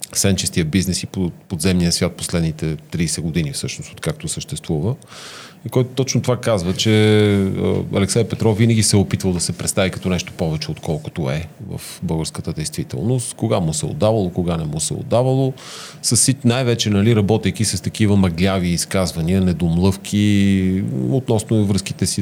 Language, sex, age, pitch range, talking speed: Bulgarian, male, 40-59, 95-120 Hz, 150 wpm